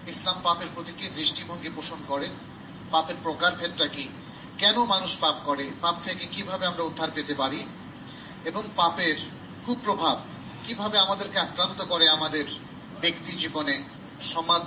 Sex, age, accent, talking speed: male, 40-59, native, 130 wpm